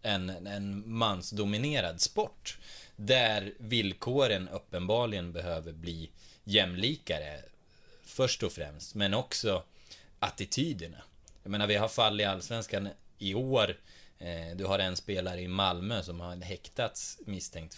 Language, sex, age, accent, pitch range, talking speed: Swedish, male, 20-39, native, 90-110 Hz, 120 wpm